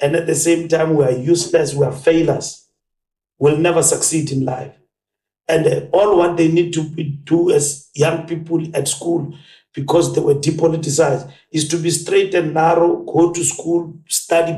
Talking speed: 175 wpm